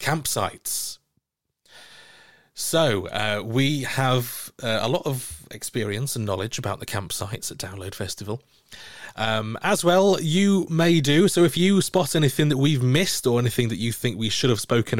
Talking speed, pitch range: 165 wpm, 105-145 Hz